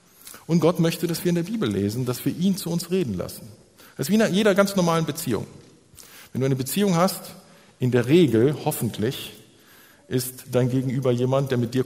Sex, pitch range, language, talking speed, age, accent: male, 115-170 Hz, German, 200 wpm, 50-69, German